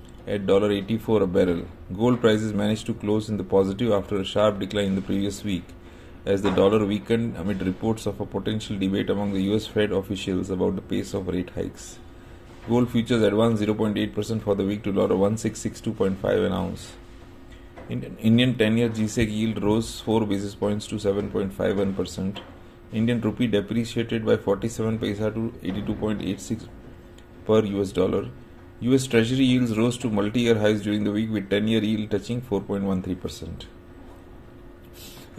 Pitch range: 95-115 Hz